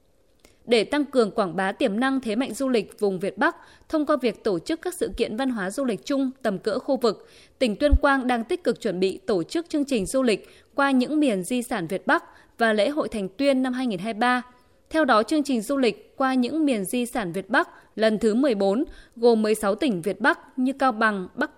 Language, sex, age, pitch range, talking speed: Vietnamese, female, 20-39, 210-275 Hz, 235 wpm